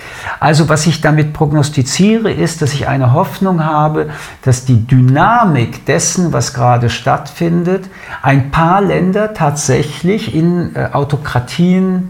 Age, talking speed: 50-69, 120 wpm